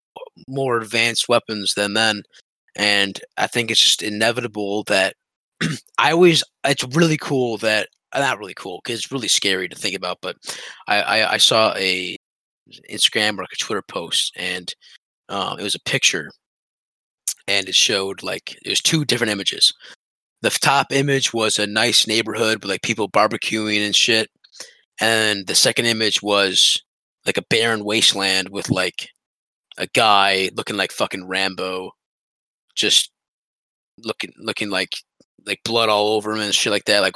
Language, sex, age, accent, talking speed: English, male, 20-39, American, 160 wpm